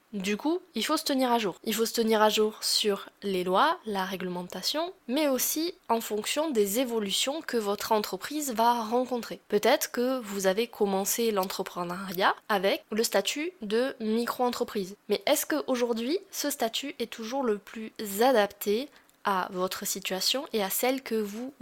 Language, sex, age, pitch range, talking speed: French, female, 20-39, 205-260 Hz, 165 wpm